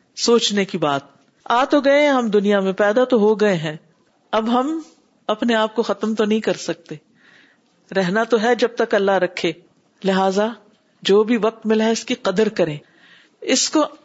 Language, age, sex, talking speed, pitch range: Urdu, 50-69, female, 185 wpm, 205-290 Hz